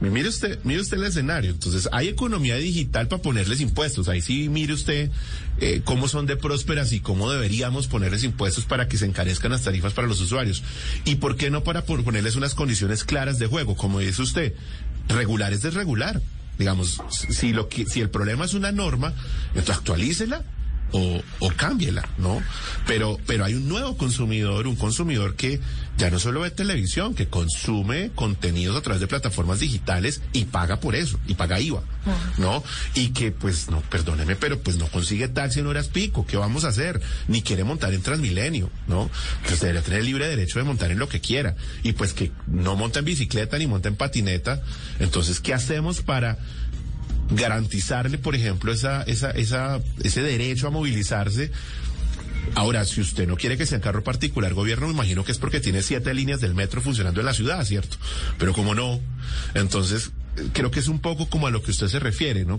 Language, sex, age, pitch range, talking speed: Spanish, male, 30-49, 95-135 Hz, 195 wpm